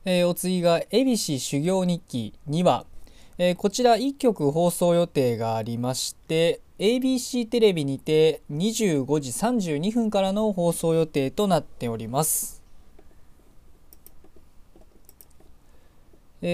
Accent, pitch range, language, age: native, 125-210 Hz, Japanese, 20-39